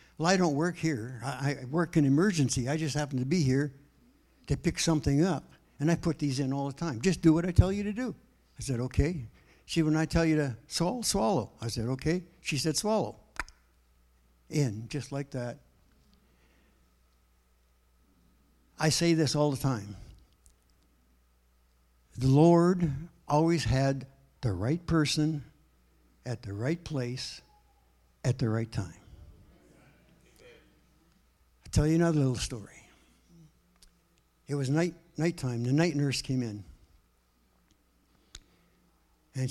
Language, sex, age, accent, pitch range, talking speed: English, male, 60-79, American, 95-150 Hz, 140 wpm